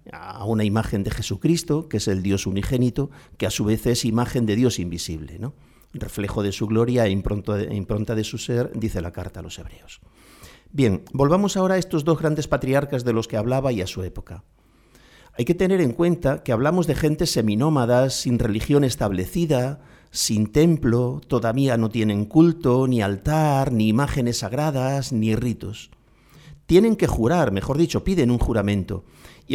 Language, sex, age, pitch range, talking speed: Spanish, male, 50-69, 105-150 Hz, 175 wpm